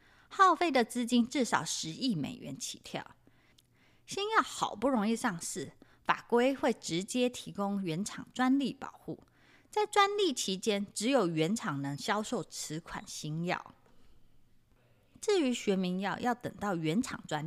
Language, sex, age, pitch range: Chinese, female, 20-39, 180-290 Hz